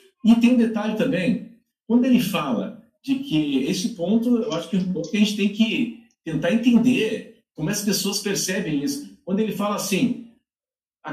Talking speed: 185 wpm